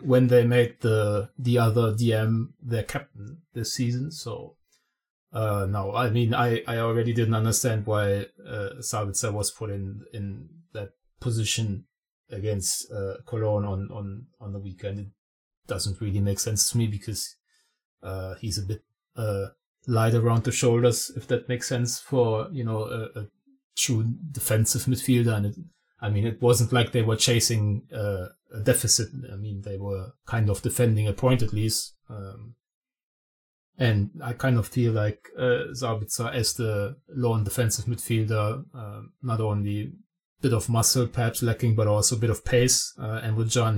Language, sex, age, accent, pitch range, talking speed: English, male, 30-49, German, 105-125 Hz, 170 wpm